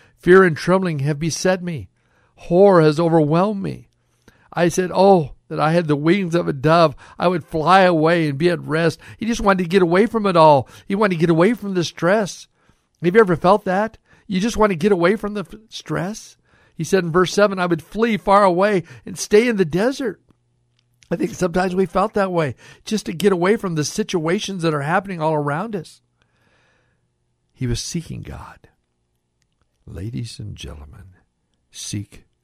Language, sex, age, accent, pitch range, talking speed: English, male, 60-79, American, 120-180 Hz, 190 wpm